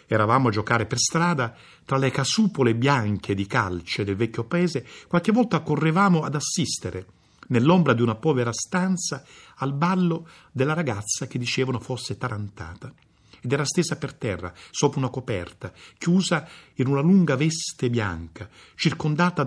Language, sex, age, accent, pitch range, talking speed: Italian, male, 50-69, native, 110-160 Hz, 145 wpm